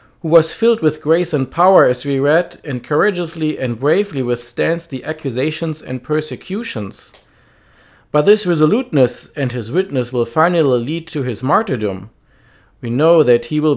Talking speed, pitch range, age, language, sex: 155 wpm, 125-170 Hz, 50-69, English, male